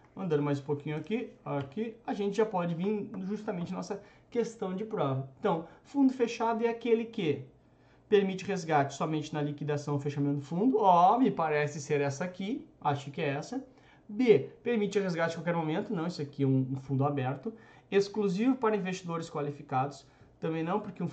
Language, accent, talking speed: Portuguese, Brazilian, 180 wpm